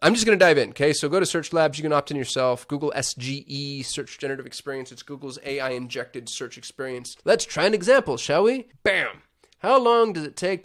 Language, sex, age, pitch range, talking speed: English, male, 20-39, 135-180 Hz, 225 wpm